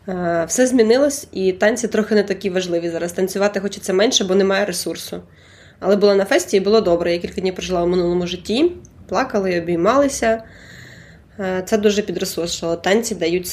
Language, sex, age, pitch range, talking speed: Ukrainian, female, 20-39, 185-235 Hz, 165 wpm